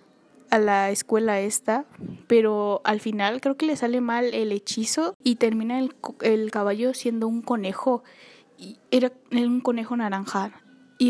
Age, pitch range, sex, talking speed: 10-29, 215-260 Hz, female, 155 wpm